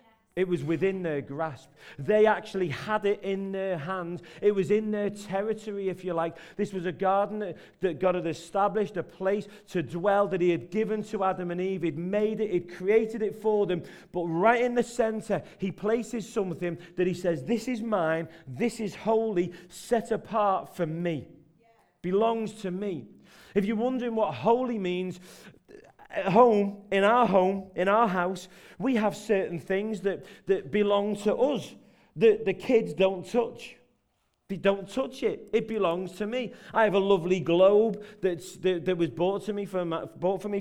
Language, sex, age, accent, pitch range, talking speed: English, male, 40-59, British, 180-215 Hz, 185 wpm